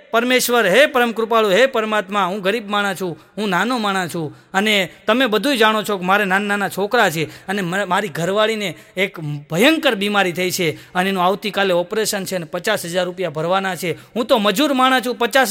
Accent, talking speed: native, 170 wpm